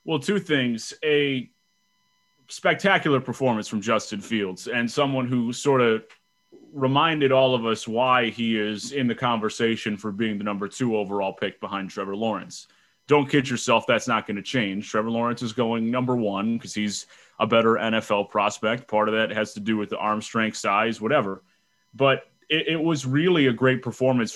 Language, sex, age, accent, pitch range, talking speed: English, male, 30-49, American, 110-130 Hz, 180 wpm